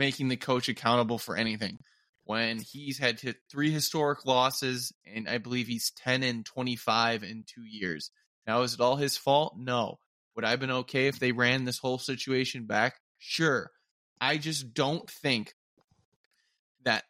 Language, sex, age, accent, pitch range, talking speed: English, male, 20-39, American, 115-145 Hz, 165 wpm